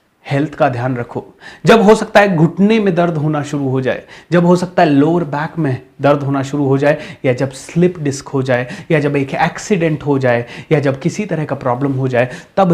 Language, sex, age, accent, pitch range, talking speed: Hindi, male, 30-49, native, 135-185 Hz, 225 wpm